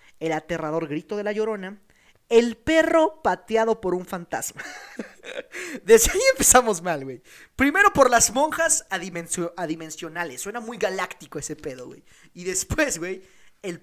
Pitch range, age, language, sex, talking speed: 160-225 Hz, 30-49, Spanish, male, 140 wpm